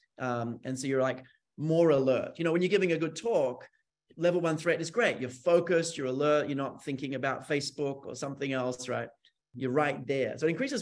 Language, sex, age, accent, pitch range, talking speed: English, male, 30-49, Australian, 130-170 Hz, 215 wpm